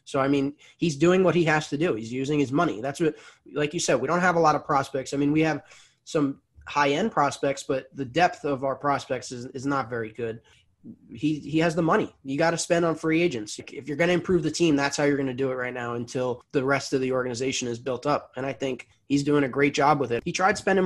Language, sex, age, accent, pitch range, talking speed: English, male, 20-39, American, 130-160 Hz, 275 wpm